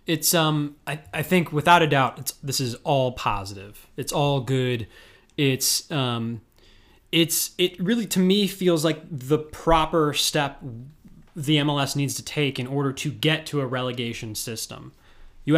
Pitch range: 120-150 Hz